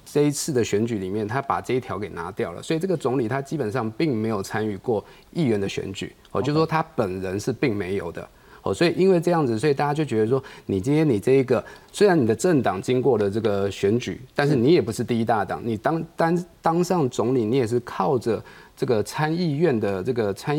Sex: male